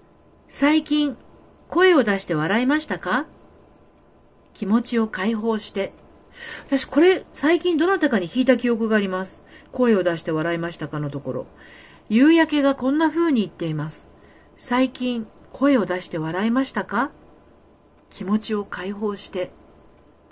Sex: female